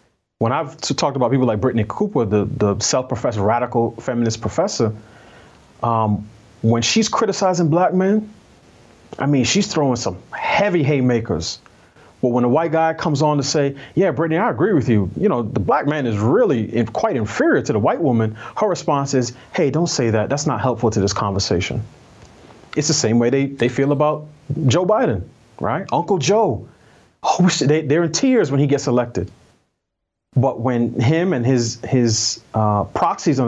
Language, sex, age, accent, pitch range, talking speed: English, male, 30-49, American, 115-150 Hz, 175 wpm